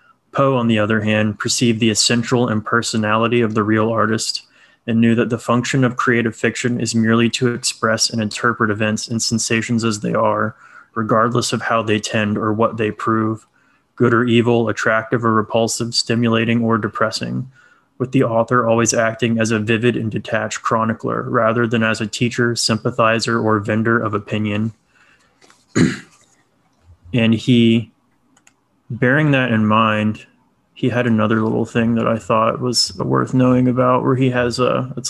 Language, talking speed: English, 160 wpm